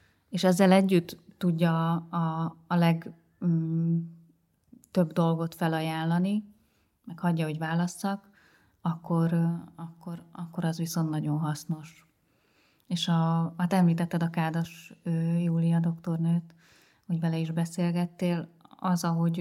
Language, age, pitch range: Hungarian, 30-49, 165-180 Hz